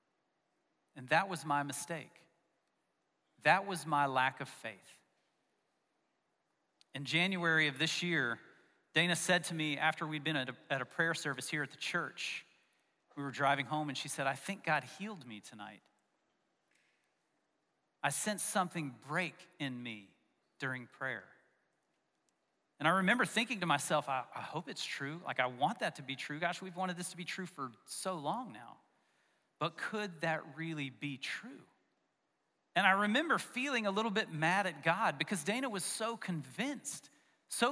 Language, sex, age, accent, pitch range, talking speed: English, male, 40-59, American, 150-195 Hz, 160 wpm